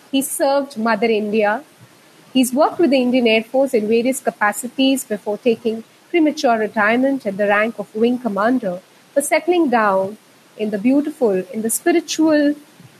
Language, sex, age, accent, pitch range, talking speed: Hindi, female, 30-49, native, 220-280 Hz, 150 wpm